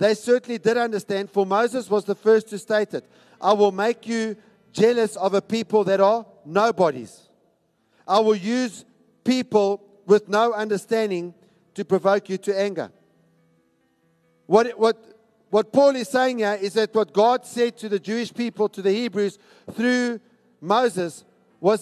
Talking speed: 155 wpm